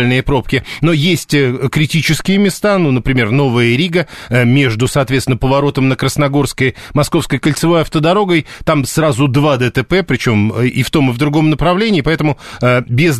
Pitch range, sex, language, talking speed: 130-155 Hz, male, Russian, 140 wpm